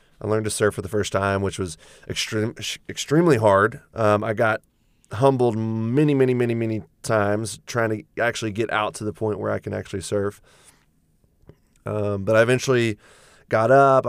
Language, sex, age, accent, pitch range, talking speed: English, male, 20-39, American, 100-115 Hz, 170 wpm